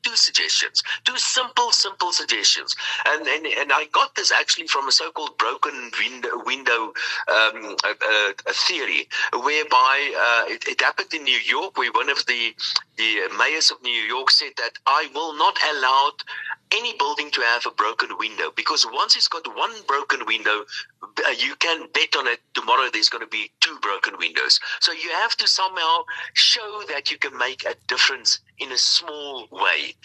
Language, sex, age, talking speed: English, male, 60-79, 180 wpm